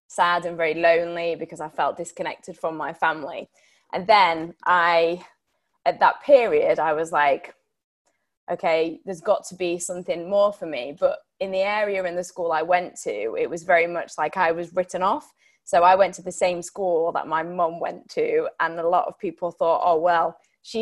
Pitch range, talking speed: 170-205 Hz, 200 wpm